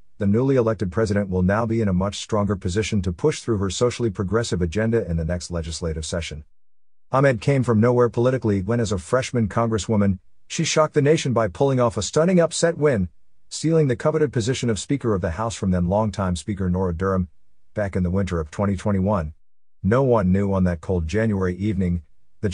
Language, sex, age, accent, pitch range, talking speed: English, male, 50-69, American, 90-110 Hz, 200 wpm